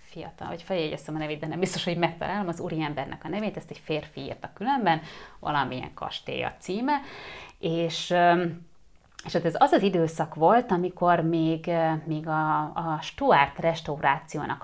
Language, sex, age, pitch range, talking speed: Hungarian, female, 30-49, 150-180 Hz, 155 wpm